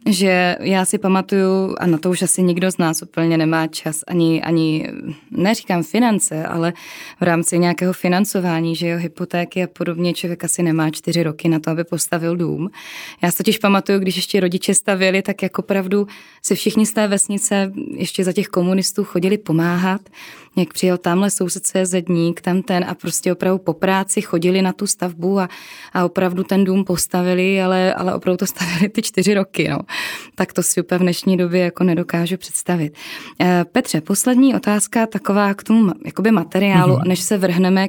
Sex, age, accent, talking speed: female, 20-39, native, 175 wpm